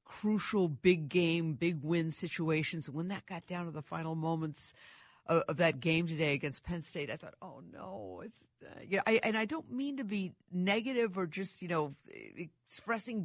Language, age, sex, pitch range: English, 50-69, female, 170-235 Hz